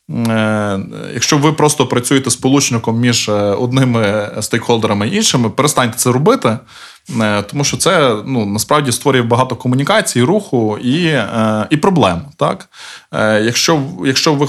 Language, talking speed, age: Ukrainian, 120 wpm, 20-39